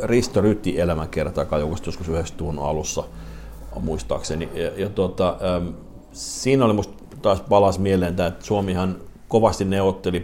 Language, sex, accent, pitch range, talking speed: Finnish, male, native, 85-100 Hz, 125 wpm